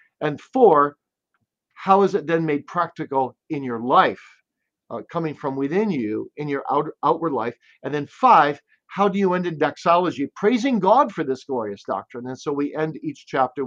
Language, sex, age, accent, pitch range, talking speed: English, male, 50-69, American, 125-155 Hz, 185 wpm